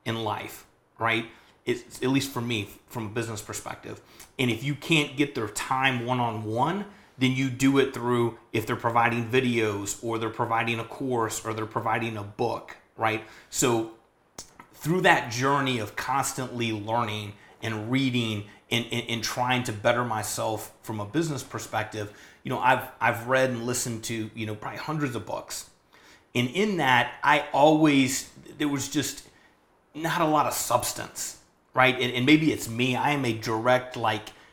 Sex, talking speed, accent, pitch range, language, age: male, 175 wpm, American, 110-130 Hz, English, 30-49